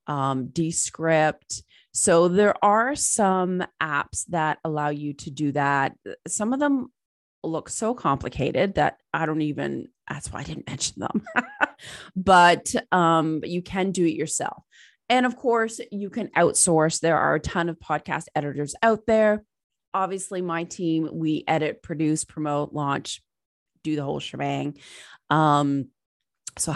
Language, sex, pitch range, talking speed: English, female, 150-205 Hz, 150 wpm